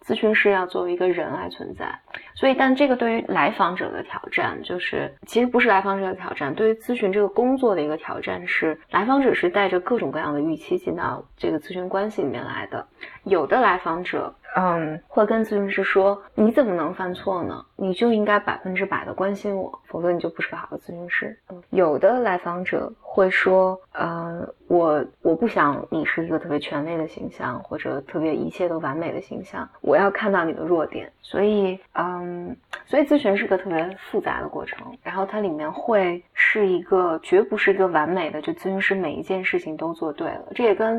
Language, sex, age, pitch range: Chinese, female, 20-39, 175-235 Hz